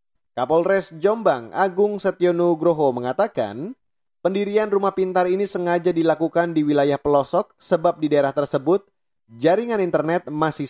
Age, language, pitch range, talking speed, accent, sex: 30-49, Indonesian, 140-185 Hz, 120 wpm, native, male